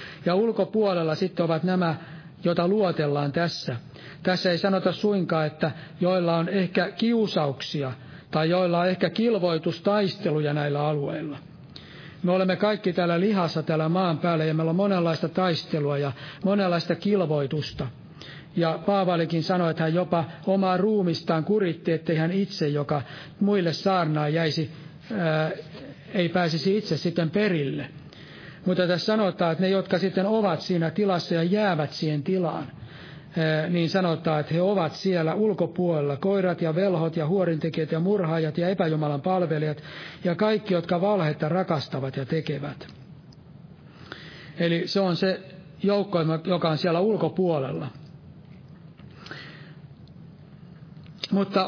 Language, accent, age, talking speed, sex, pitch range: Finnish, native, 60-79, 130 wpm, male, 155-185 Hz